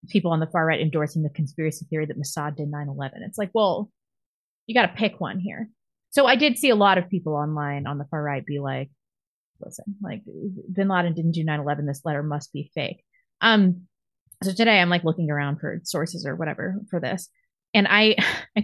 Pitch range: 155-220 Hz